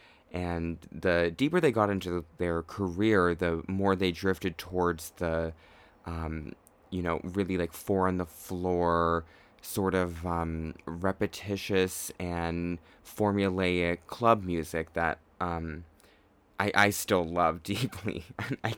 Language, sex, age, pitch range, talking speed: English, male, 20-39, 85-95 Hz, 125 wpm